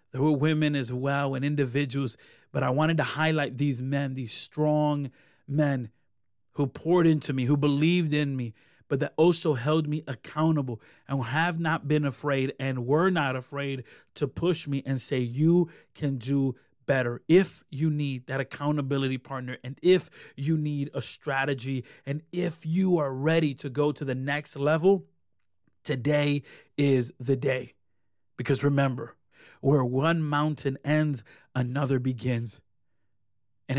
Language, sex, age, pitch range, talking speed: English, male, 30-49, 130-150 Hz, 150 wpm